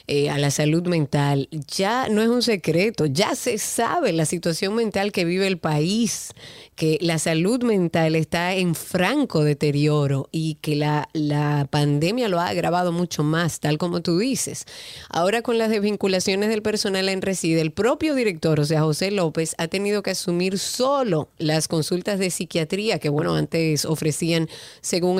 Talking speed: 170 wpm